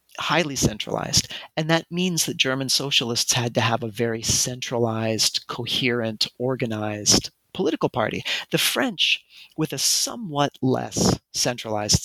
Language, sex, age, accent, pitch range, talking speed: English, male, 30-49, American, 115-145 Hz, 125 wpm